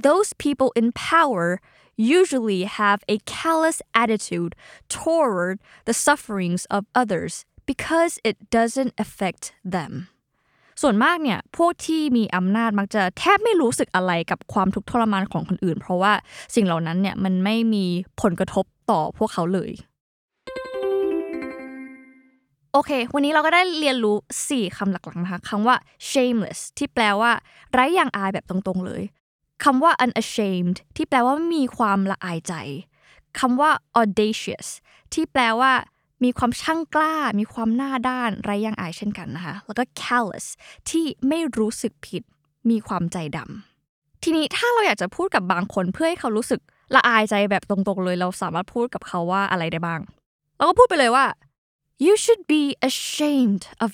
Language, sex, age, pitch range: Thai, female, 10-29, 195-280 Hz